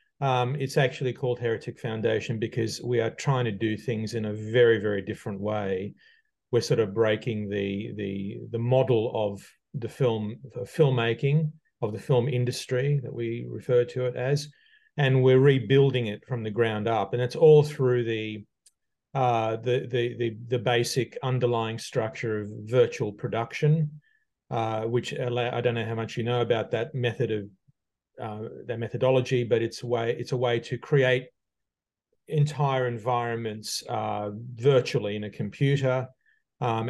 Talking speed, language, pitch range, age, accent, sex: 165 wpm, English, 110-130 Hz, 40-59, Australian, male